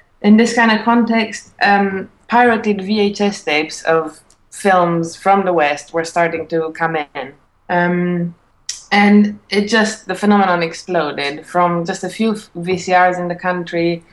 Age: 20-39